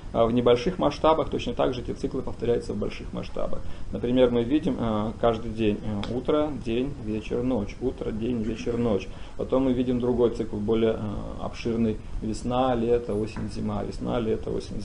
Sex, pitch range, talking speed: male, 115-145 Hz, 160 wpm